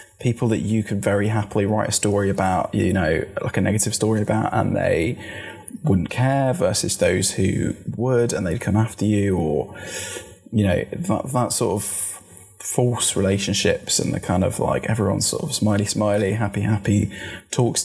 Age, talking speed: 20-39, 175 wpm